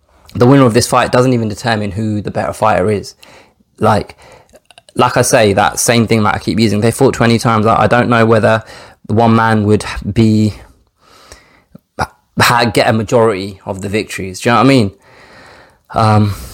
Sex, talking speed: male, 180 wpm